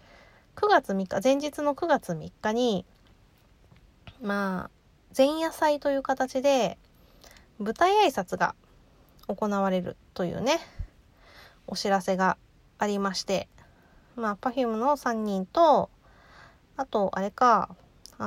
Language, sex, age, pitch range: Japanese, female, 20-39, 200-270 Hz